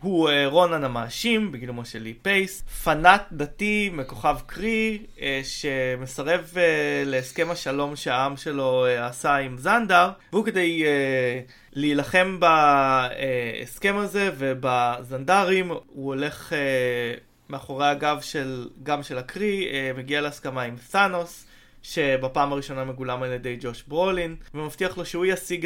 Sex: male